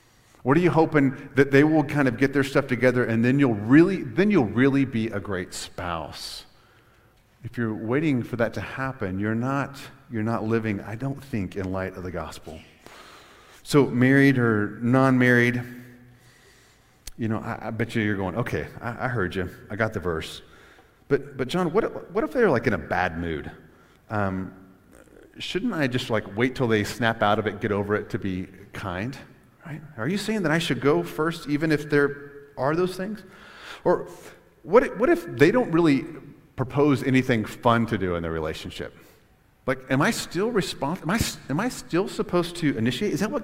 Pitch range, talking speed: 110-150 Hz, 195 wpm